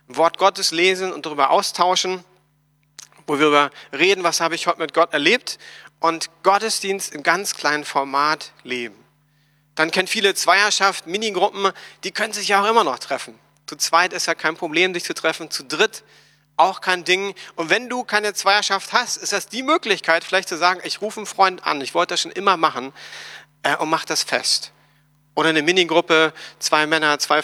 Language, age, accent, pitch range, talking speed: German, 40-59, German, 150-195 Hz, 190 wpm